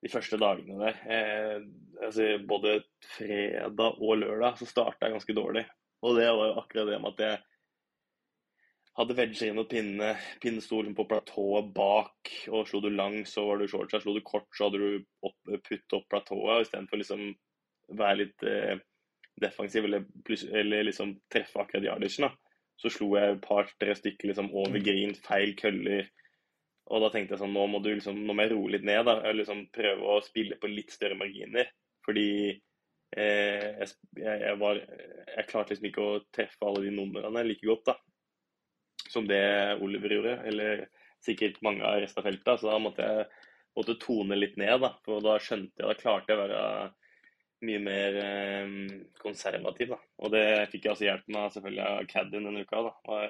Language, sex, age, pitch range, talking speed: English, male, 10-29, 100-110 Hz, 180 wpm